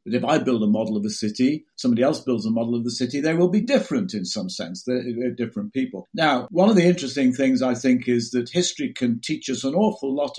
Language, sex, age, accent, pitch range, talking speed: English, male, 50-69, British, 130-185 Hz, 260 wpm